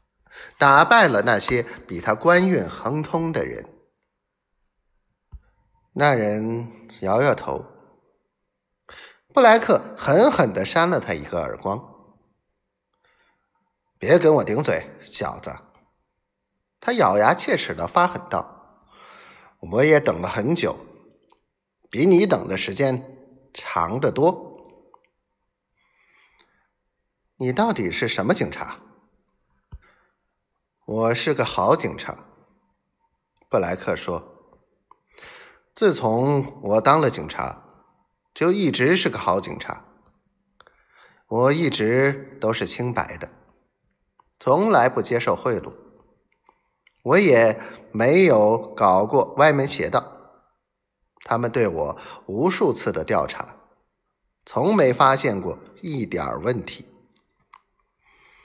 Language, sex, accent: Chinese, male, native